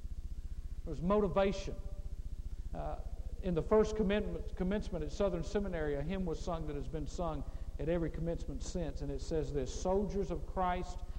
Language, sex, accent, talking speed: English, male, American, 165 wpm